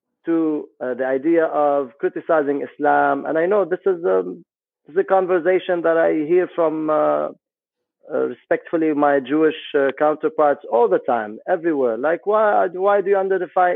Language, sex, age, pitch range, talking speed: English, male, 50-69, 145-200 Hz, 165 wpm